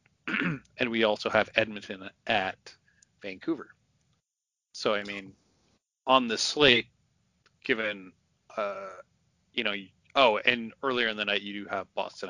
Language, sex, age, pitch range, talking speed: English, male, 30-49, 95-115 Hz, 130 wpm